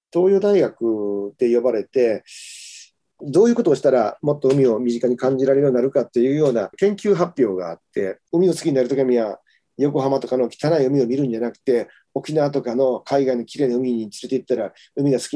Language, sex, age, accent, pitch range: Japanese, male, 40-59, native, 120-165 Hz